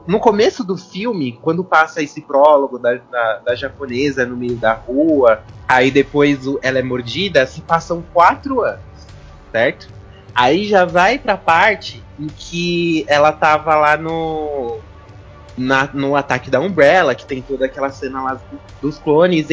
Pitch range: 130-175 Hz